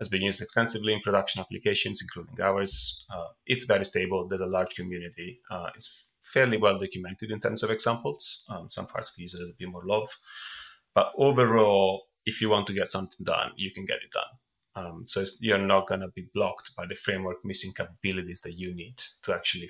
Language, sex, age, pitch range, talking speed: English, male, 30-49, 95-110 Hz, 200 wpm